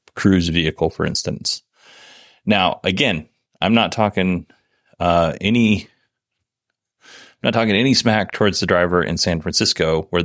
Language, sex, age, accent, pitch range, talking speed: English, male, 30-49, American, 85-105 Hz, 135 wpm